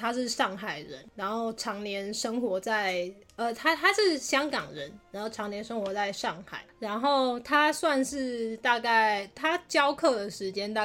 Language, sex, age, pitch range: Chinese, female, 20-39, 190-230 Hz